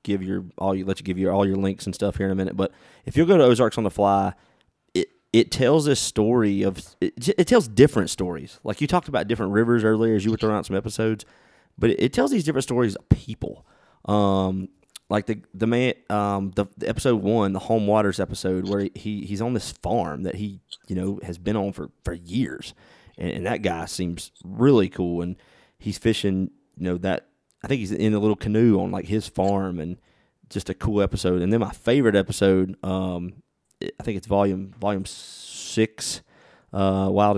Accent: American